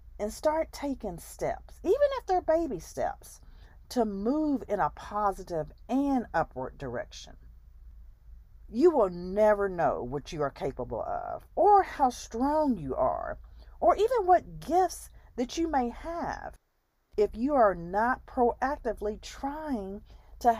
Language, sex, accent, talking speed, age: English, female, American, 135 wpm, 40-59